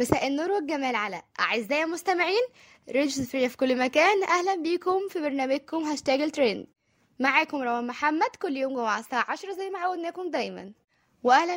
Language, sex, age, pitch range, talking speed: Arabic, female, 20-39, 240-350 Hz, 150 wpm